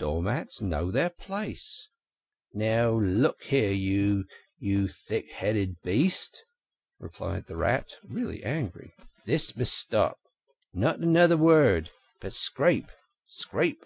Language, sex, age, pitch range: English, male, 50-69, 90-135 Hz